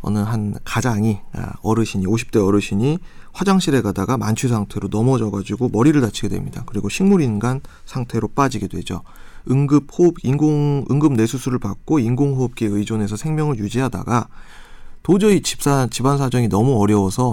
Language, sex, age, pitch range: Korean, male, 30-49, 105-145 Hz